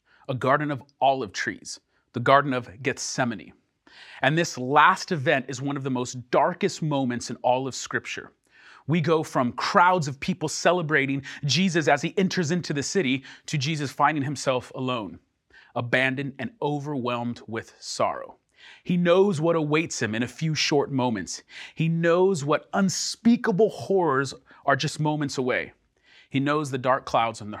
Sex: male